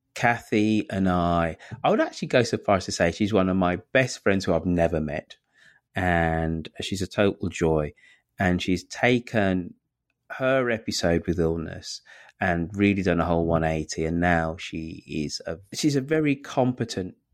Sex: male